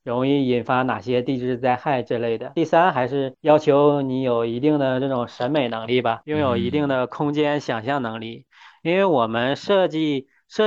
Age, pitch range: 20-39, 120-145 Hz